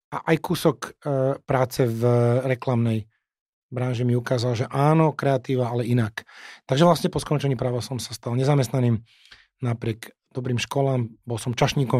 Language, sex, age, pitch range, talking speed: Slovak, male, 30-49, 115-135 Hz, 145 wpm